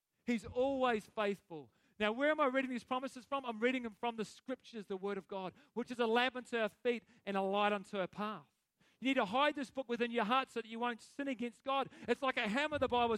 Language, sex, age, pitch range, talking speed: English, male, 40-59, 200-260 Hz, 255 wpm